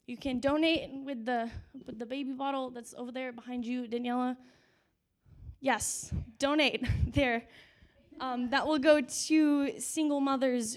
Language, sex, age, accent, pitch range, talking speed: English, female, 10-29, American, 230-275 Hz, 140 wpm